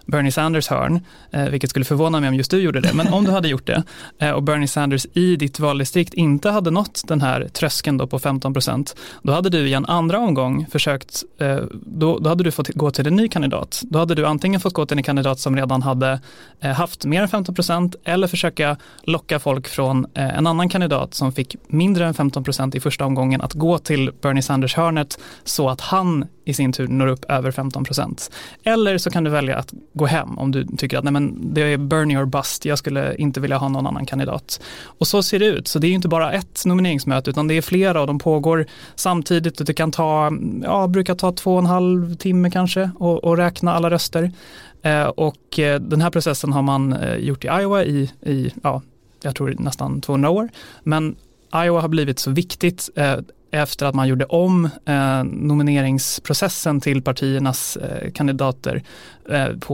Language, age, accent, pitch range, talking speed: Swedish, 30-49, native, 135-170 Hz, 200 wpm